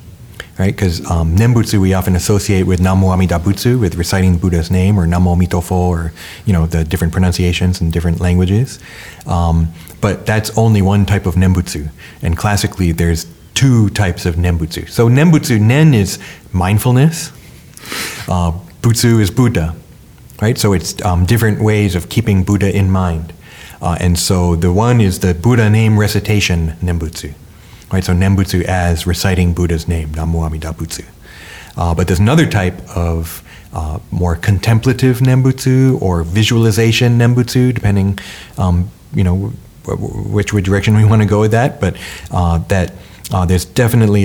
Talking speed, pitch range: 155 wpm, 85-110 Hz